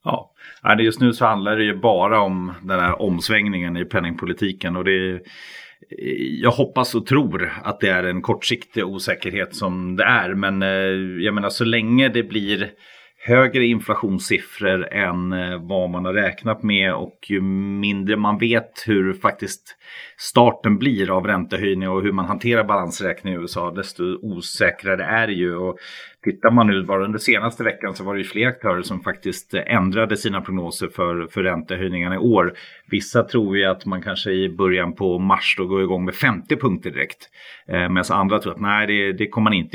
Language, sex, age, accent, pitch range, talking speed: Swedish, male, 30-49, native, 90-110 Hz, 180 wpm